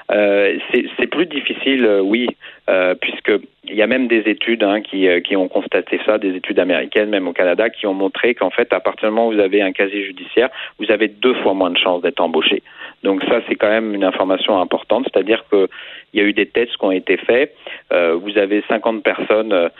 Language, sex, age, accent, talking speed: French, male, 40-59, French, 225 wpm